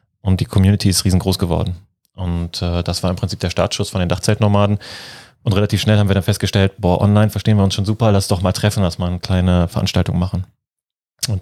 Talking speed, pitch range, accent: 220 wpm, 95-110 Hz, German